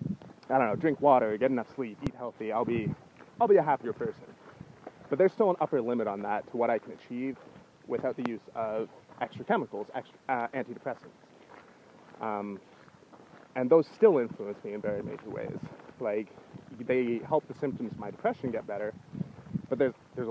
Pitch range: 110-145 Hz